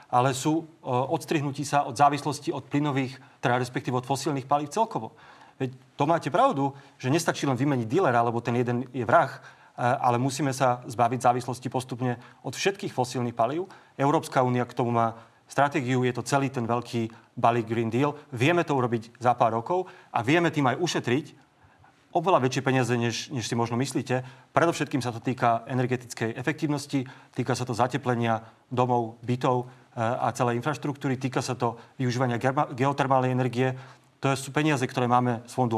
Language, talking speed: Slovak, 165 wpm